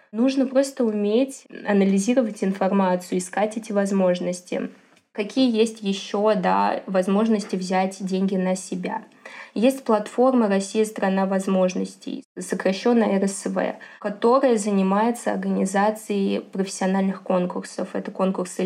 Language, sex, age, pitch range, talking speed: Russian, female, 20-39, 195-225 Hz, 105 wpm